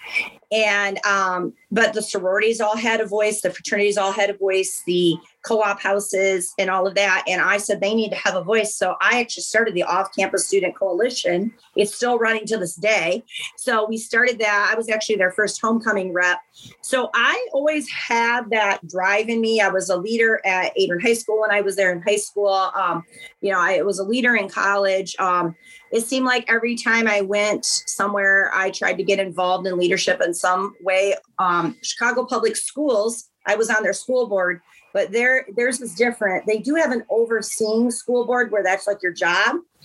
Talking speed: 200 wpm